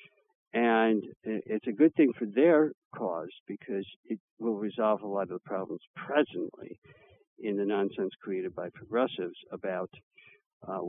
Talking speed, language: 145 wpm, English